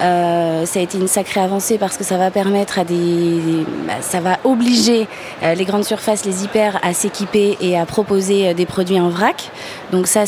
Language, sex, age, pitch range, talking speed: French, female, 20-39, 180-215 Hz, 210 wpm